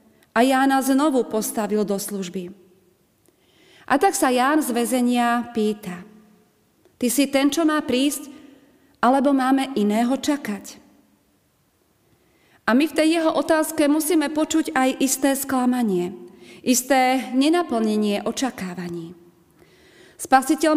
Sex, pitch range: female, 210-280 Hz